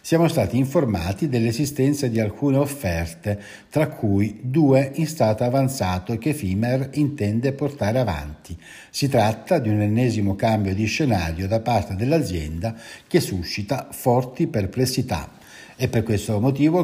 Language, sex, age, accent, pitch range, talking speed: Italian, male, 60-79, native, 100-135 Hz, 130 wpm